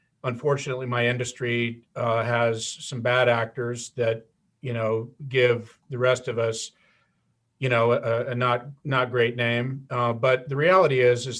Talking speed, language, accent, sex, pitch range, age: 160 wpm, English, American, male, 115-135 Hz, 50-69